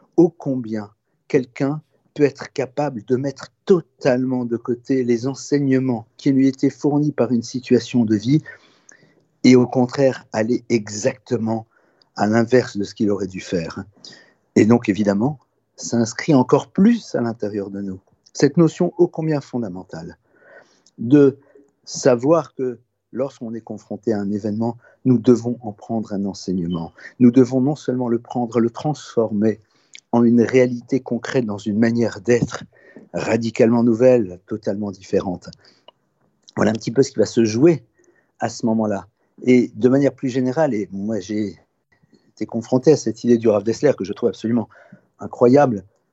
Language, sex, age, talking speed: French, male, 50-69, 155 wpm